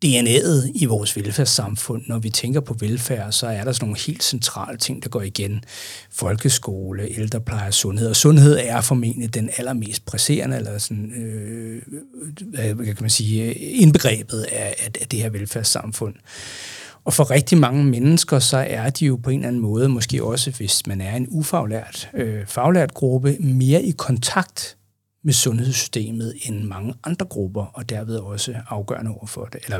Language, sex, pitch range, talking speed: Danish, male, 105-135 Hz, 165 wpm